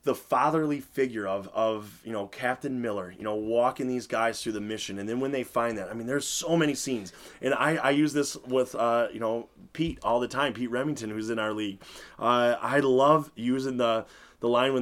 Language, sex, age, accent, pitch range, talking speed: English, male, 30-49, American, 110-135 Hz, 225 wpm